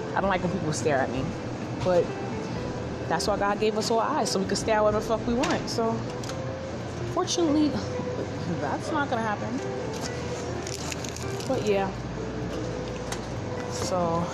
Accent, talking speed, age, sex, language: American, 145 wpm, 20-39, female, English